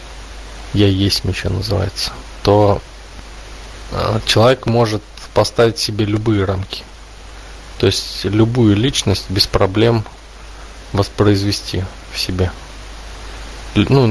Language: Russian